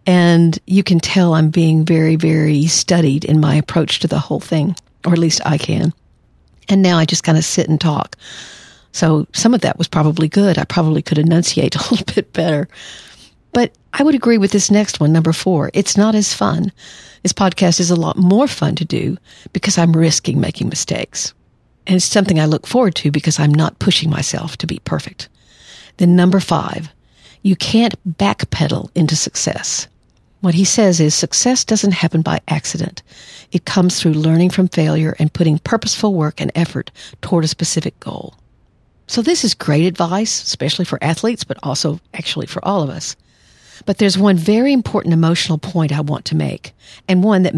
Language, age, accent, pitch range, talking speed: English, 50-69, American, 155-190 Hz, 190 wpm